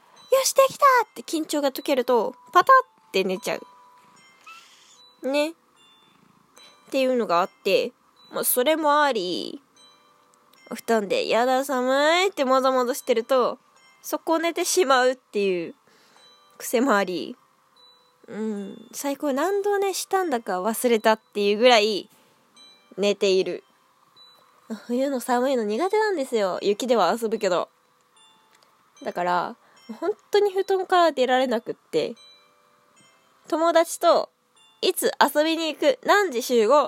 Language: Japanese